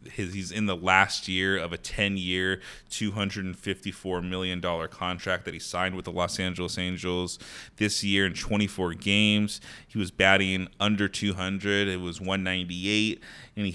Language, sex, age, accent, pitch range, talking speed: English, male, 20-39, American, 85-95 Hz, 155 wpm